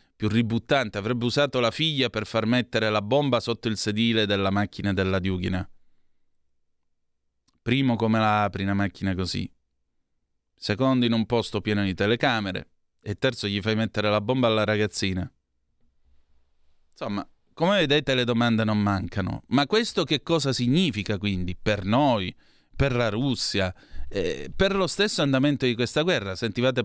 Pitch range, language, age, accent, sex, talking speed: 100-135 Hz, Italian, 30-49, native, male, 150 wpm